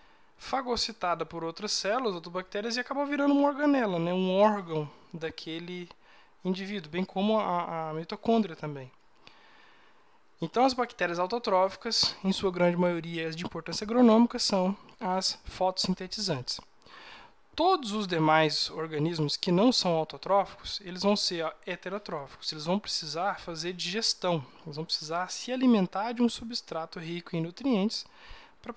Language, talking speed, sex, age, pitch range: Portuguese, 140 wpm, male, 20-39, 165-215 Hz